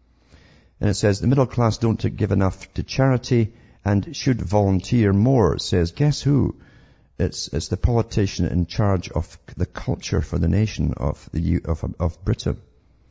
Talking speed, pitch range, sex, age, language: 165 wpm, 85-110 Hz, male, 50-69, English